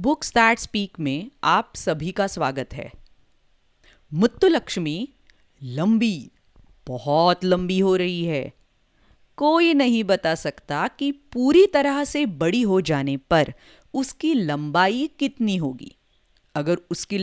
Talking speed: 120 wpm